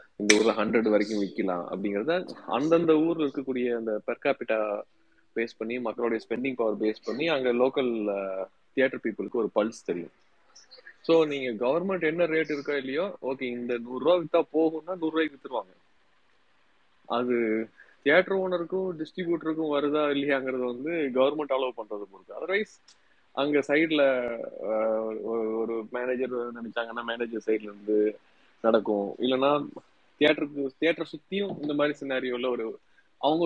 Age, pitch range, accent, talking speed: 20-39, 115-160 Hz, native, 75 wpm